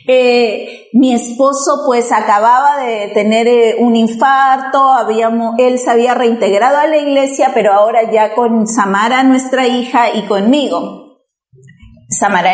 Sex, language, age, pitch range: female, Spanish, 30-49, 230-285 Hz